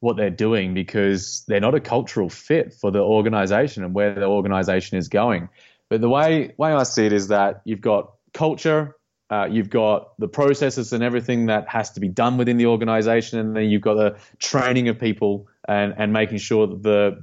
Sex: male